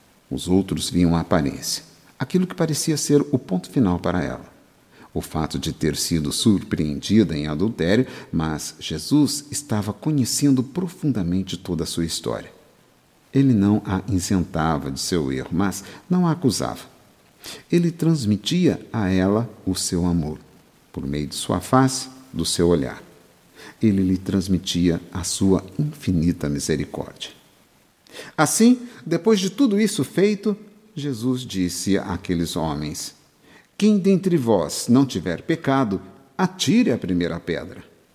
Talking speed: 130 wpm